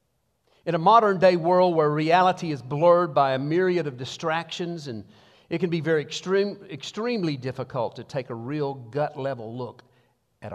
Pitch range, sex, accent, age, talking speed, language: 135-185 Hz, male, American, 50-69, 170 wpm, English